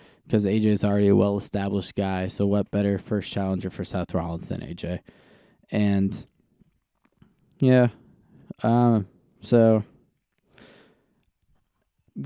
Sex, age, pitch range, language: male, 20-39, 100-125 Hz, English